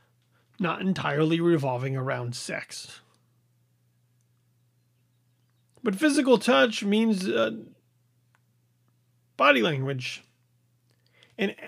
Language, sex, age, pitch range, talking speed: English, male, 30-49, 120-185 Hz, 65 wpm